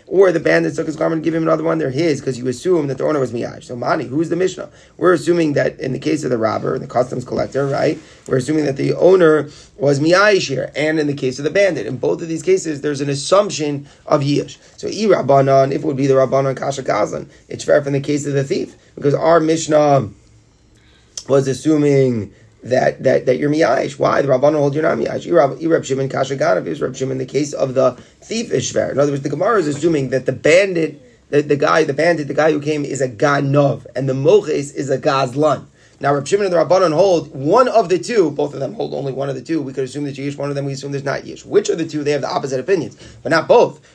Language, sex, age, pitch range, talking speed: English, male, 30-49, 135-160 Hz, 245 wpm